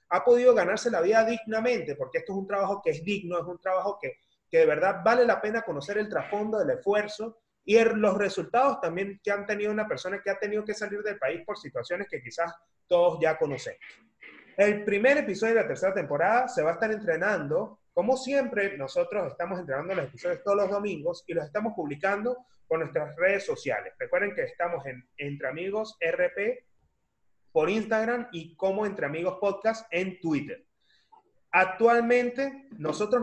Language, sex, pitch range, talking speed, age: Spanish, male, 180-230 Hz, 180 wpm, 30-49